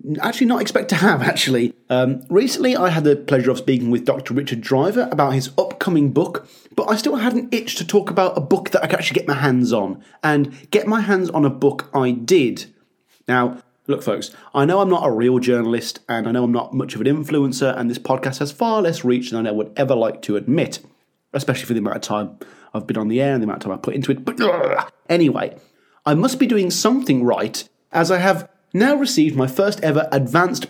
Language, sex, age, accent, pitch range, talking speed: English, male, 30-49, British, 130-185 Hz, 235 wpm